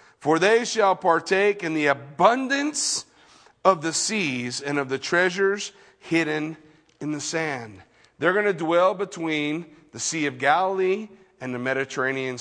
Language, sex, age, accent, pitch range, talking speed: English, male, 40-59, American, 140-190 Hz, 145 wpm